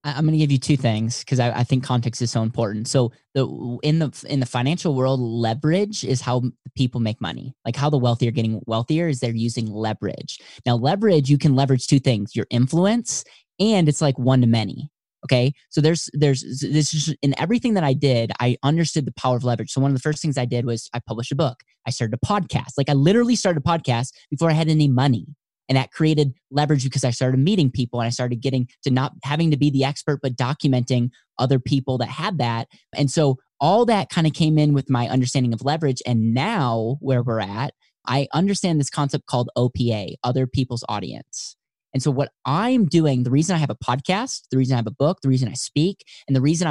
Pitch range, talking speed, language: 120-150 Hz, 230 wpm, English